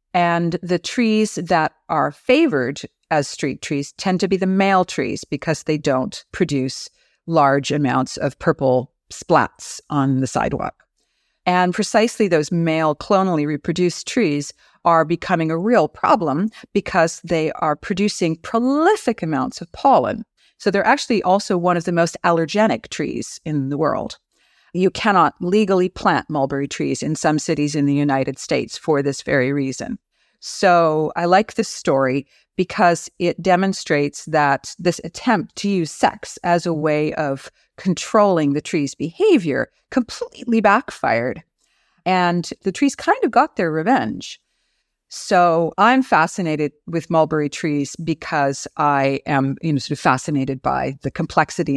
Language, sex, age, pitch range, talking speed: English, female, 50-69, 145-190 Hz, 145 wpm